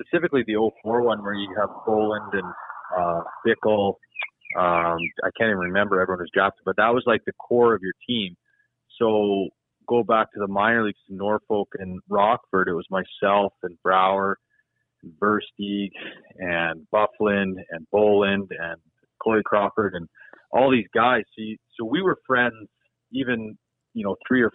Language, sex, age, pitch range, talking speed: English, male, 30-49, 100-115 Hz, 165 wpm